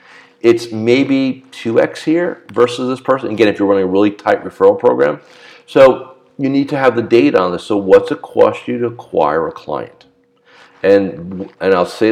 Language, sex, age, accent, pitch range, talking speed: English, male, 50-69, American, 95-155 Hz, 190 wpm